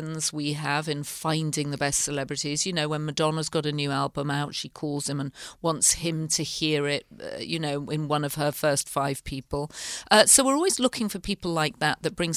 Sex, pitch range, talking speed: female, 140-160 Hz, 220 wpm